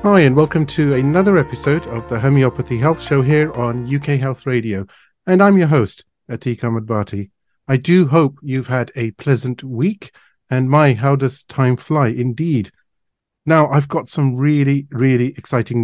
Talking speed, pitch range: 165 wpm, 120-145 Hz